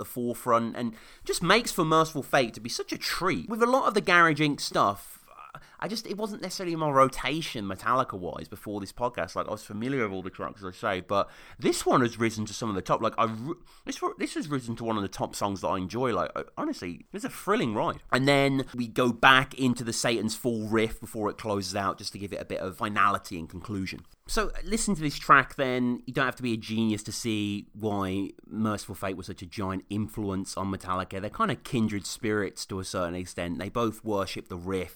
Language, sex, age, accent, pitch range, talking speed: English, male, 30-49, British, 100-130 Hz, 235 wpm